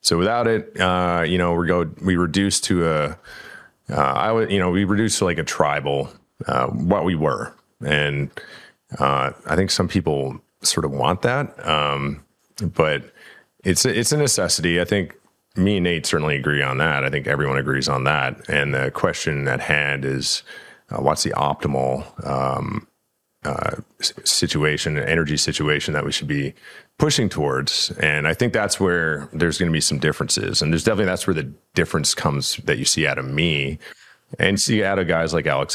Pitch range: 70-95 Hz